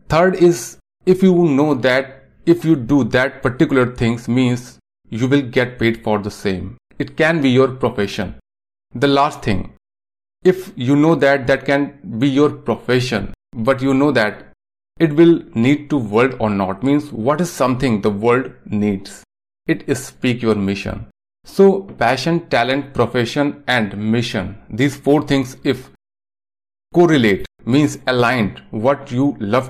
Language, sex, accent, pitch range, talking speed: Hindi, male, native, 105-140 Hz, 155 wpm